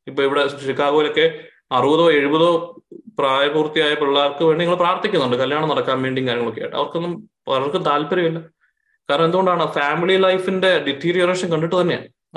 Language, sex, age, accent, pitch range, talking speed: Malayalam, male, 20-39, native, 145-185 Hz, 120 wpm